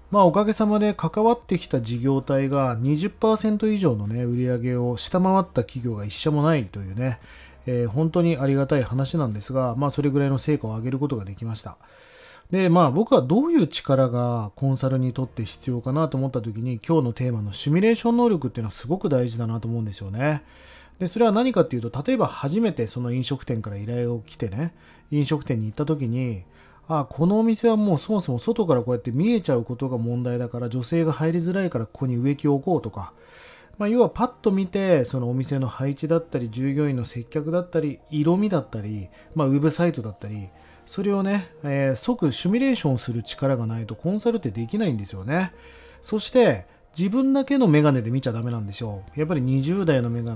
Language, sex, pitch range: Japanese, male, 120-175 Hz